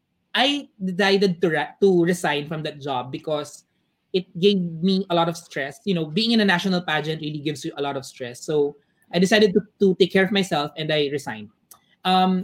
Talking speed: 210 wpm